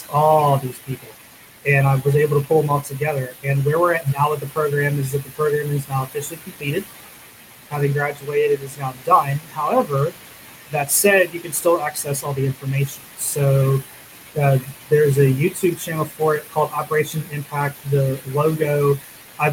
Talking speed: 175 wpm